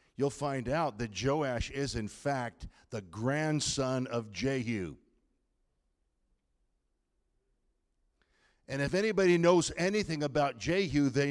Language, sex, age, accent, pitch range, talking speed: English, male, 50-69, American, 130-215 Hz, 105 wpm